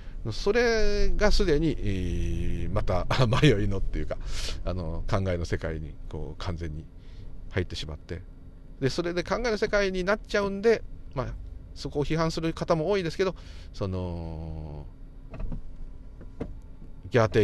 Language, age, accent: Japanese, 40-59, native